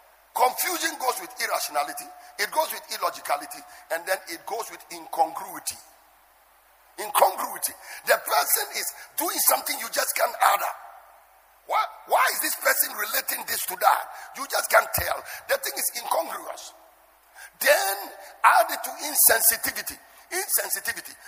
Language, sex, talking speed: English, male, 135 wpm